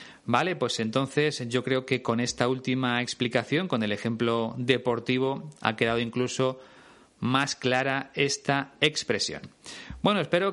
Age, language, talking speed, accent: 30-49, Spanish, 130 wpm, Spanish